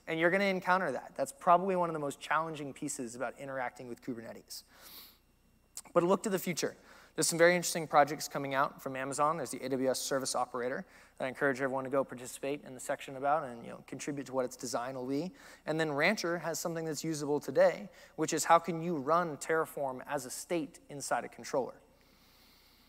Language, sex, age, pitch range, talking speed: English, male, 20-39, 140-175 Hz, 205 wpm